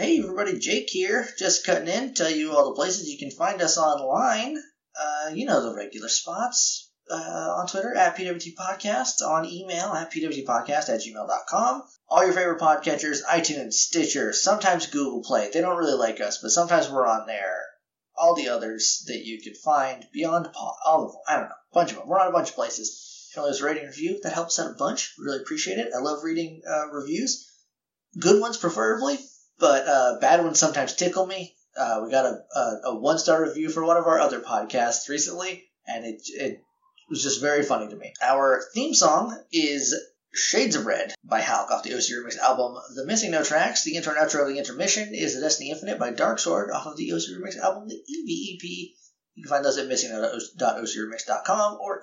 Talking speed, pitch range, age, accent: 200 wpm, 145-190 Hz, 30-49, American